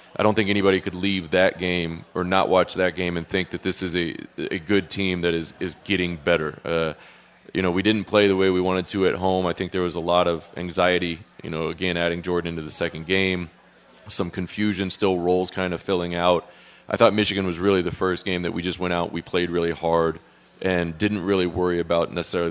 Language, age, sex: English, 20-39, male